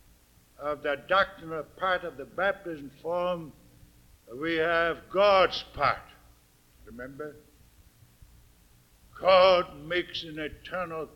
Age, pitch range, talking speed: 60-79, 120-190 Hz, 90 wpm